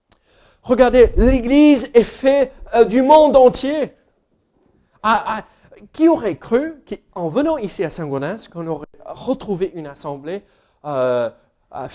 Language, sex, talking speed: French, male, 125 wpm